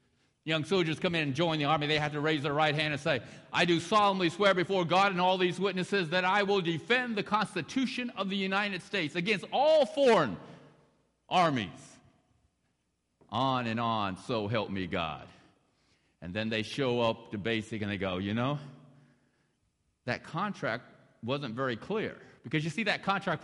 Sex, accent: male, American